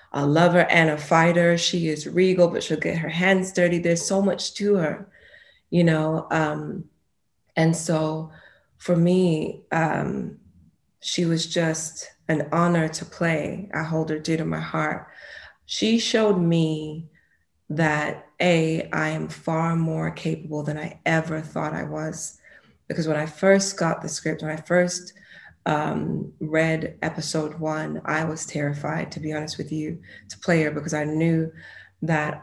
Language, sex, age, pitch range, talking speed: English, female, 20-39, 155-175 Hz, 160 wpm